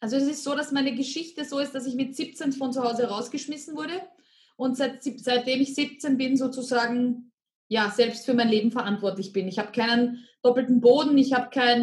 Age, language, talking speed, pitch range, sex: 20-39, German, 195 wpm, 230-270 Hz, female